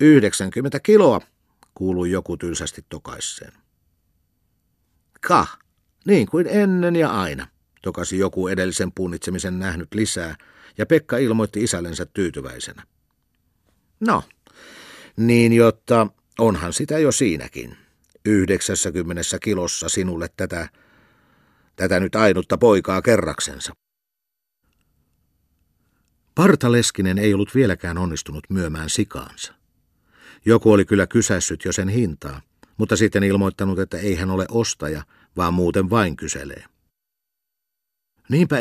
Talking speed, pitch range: 105 wpm, 90-110 Hz